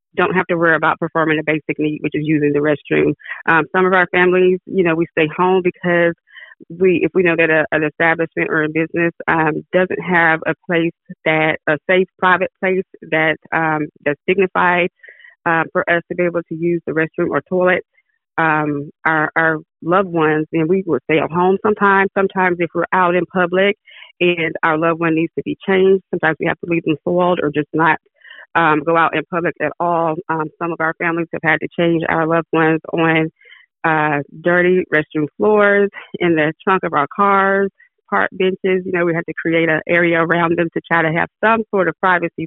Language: English